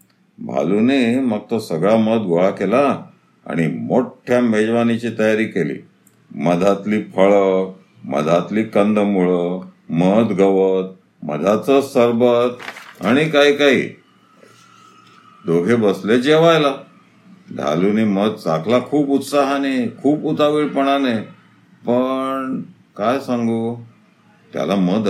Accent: native